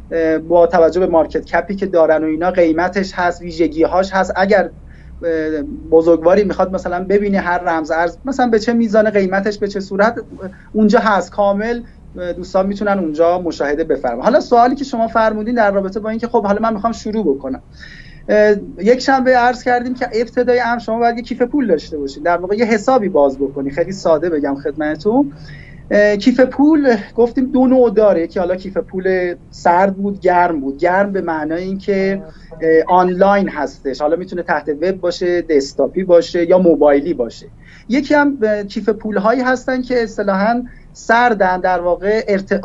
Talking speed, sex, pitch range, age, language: 165 wpm, male, 170-225 Hz, 30-49, Persian